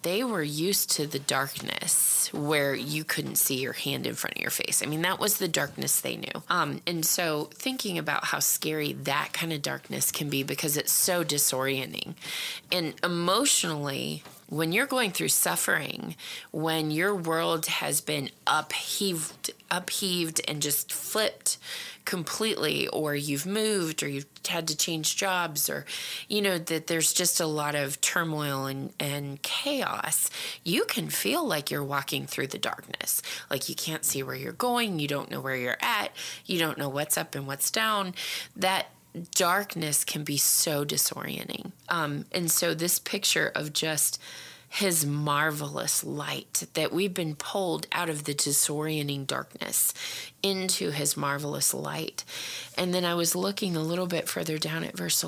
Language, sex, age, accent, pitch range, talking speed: English, female, 20-39, American, 150-190 Hz, 165 wpm